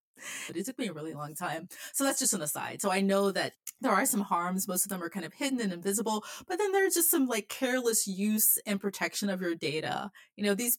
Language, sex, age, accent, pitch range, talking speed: English, female, 30-49, American, 185-245 Hz, 255 wpm